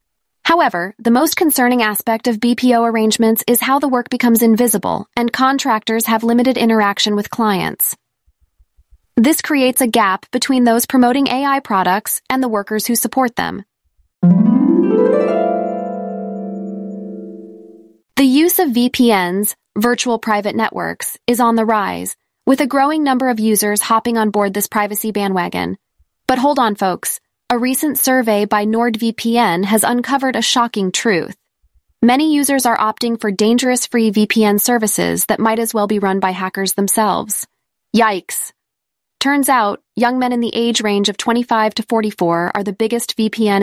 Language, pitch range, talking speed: English, 205-245 Hz, 150 wpm